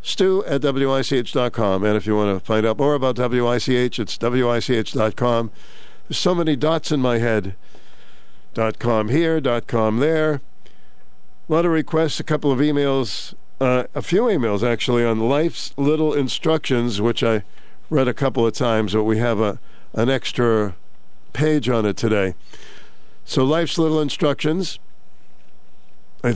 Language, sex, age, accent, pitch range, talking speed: English, male, 60-79, American, 115-155 Hz, 155 wpm